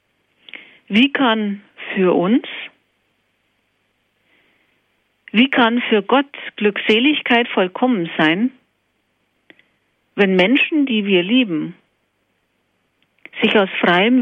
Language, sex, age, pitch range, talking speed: German, female, 50-69, 205-255 Hz, 80 wpm